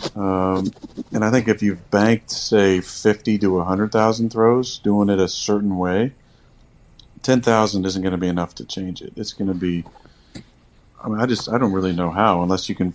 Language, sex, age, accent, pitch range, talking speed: English, male, 40-59, American, 90-105 Hz, 210 wpm